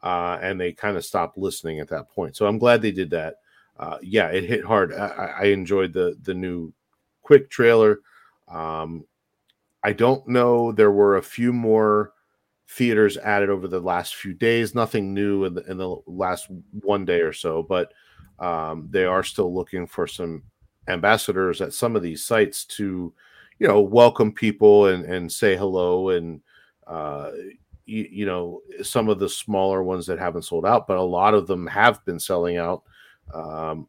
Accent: American